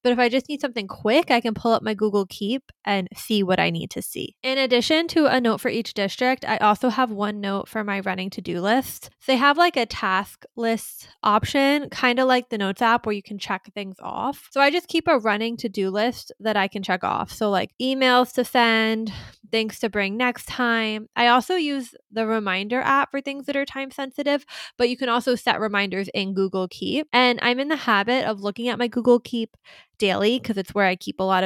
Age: 10-29